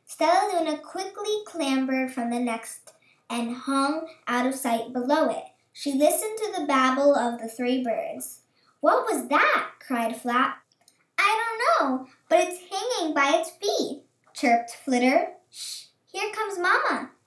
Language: English